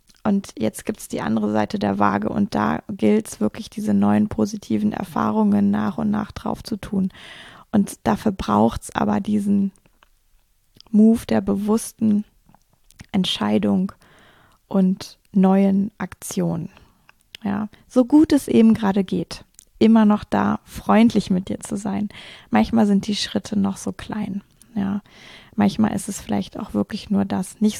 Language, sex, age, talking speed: German, female, 20-39, 145 wpm